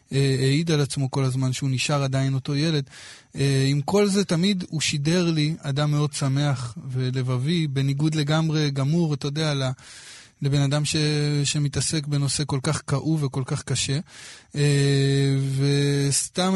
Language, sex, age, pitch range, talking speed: Hebrew, male, 20-39, 135-155 Hz, 140 wpm